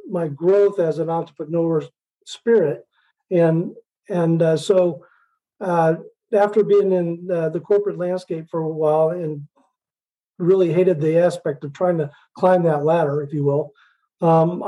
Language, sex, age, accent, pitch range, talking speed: English, male, 40-59, American, 160-190 Hz, 145 wpm